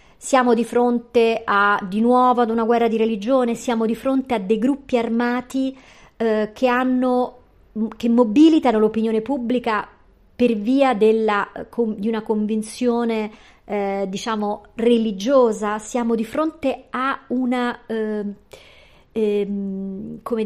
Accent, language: native, Italian